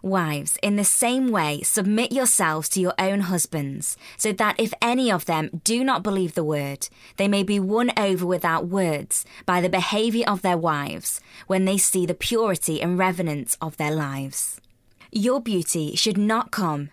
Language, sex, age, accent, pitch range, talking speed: English, female, 20-39, British, 160-210 Hz, 175 wpm